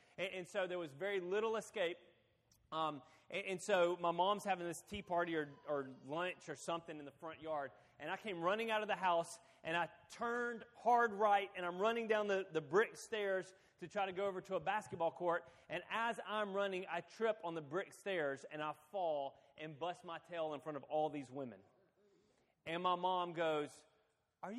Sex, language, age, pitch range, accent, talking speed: male, English, 30-49, 155-200 Hz, American, 205 wpm